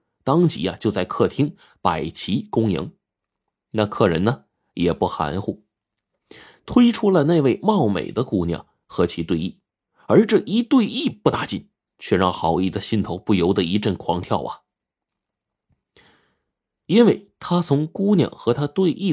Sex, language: male, Chinese